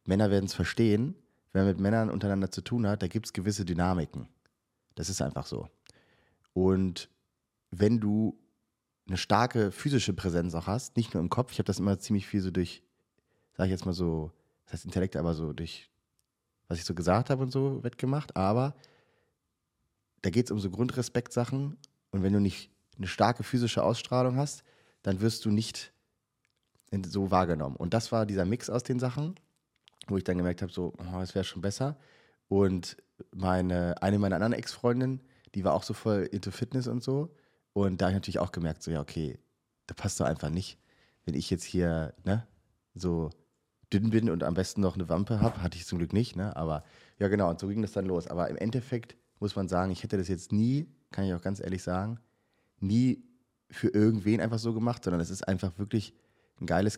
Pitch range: 90-115 Hz